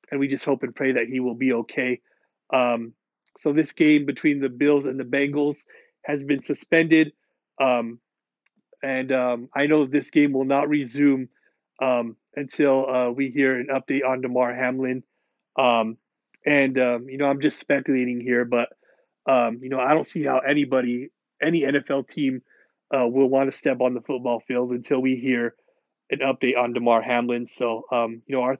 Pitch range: 125-140 Hz